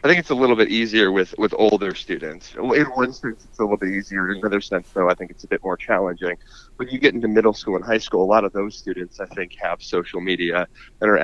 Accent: American